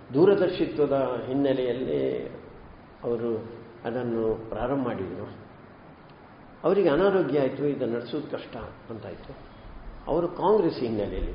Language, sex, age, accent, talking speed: Kannada, male, 50-69, native, 85 wpm